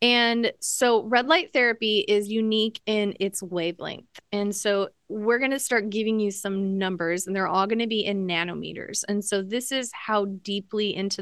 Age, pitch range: 20-39, 190-235 Hz